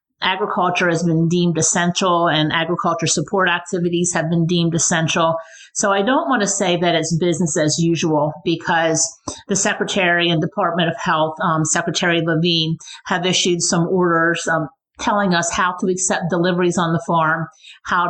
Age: 50-69